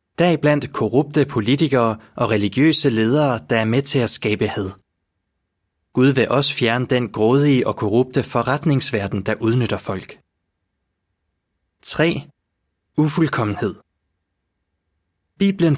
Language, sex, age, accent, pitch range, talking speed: Danish, male, 30-49, native, 95-140 Hz, 120 wpm